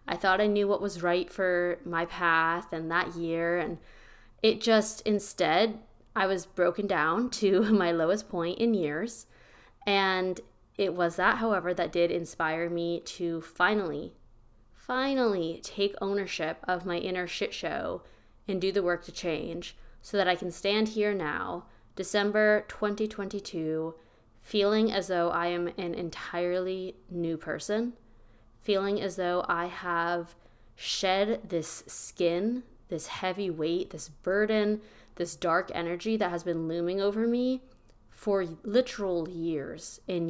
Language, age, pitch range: English, 20-39, 170-210 Hz